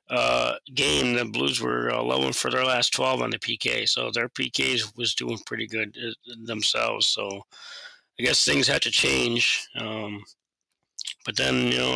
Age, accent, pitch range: 30-49, American, 105-130 Hz